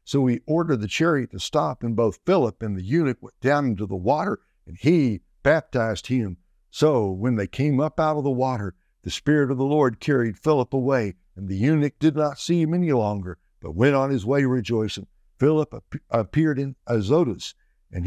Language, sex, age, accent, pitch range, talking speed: English, male, 60-79, American, 105-140 Hz, 195 wpm